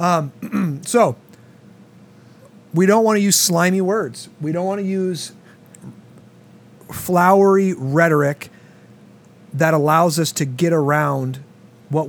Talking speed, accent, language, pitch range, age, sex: 115 wpm, American, English, 145-190 Hz, 30-49, male